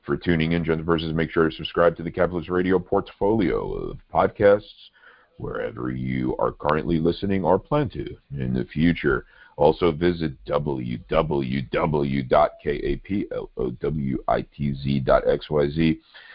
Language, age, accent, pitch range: English, 50-69, American, 70-90 Hz